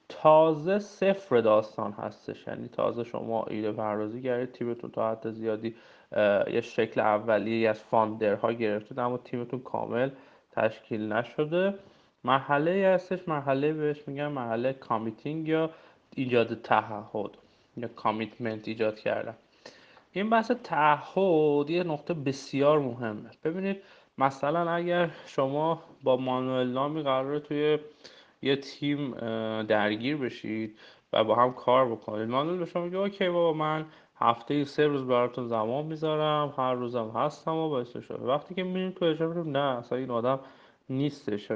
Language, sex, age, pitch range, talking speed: Persian, male, 30-49, 120-160 Hz, 135 wpm